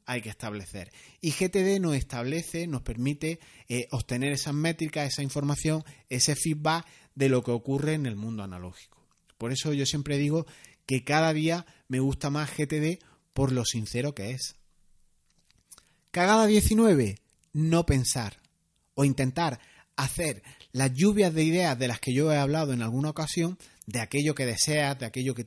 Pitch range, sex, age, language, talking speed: 130-165 Hz, male, 30-49, Spanish, 165 wpm